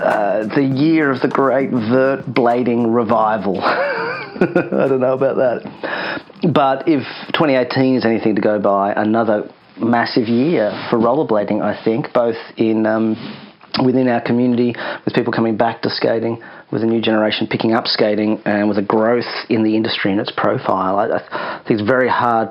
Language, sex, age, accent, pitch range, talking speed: English, male, 30-49, Australian, 105-120 Hz, 180 wpm